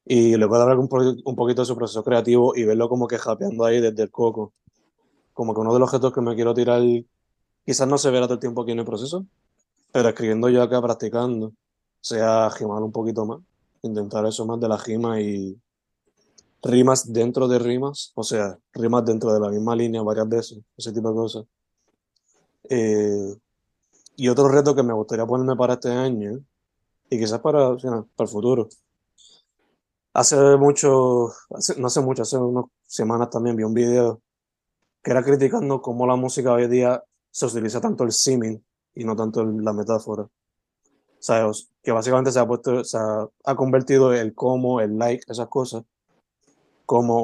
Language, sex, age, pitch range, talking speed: Spanish, male, 20-39, 110-125 Hz, 185 wpm